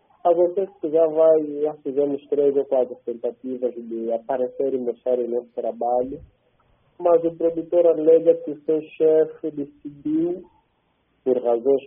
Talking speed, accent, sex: 140 wpm, Brazilian, male